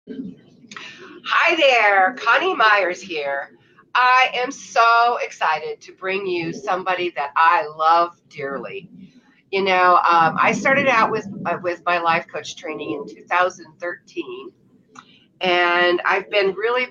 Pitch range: 160-220 Hz